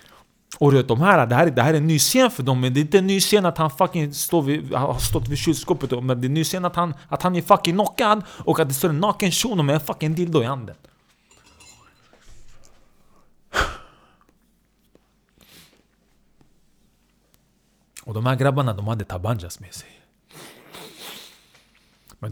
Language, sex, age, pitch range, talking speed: Swedish, male, 30-49, 120-165 Hz, 175 wpm